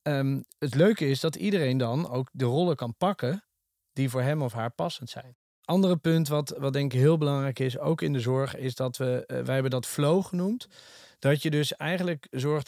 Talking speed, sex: 220 wpm, male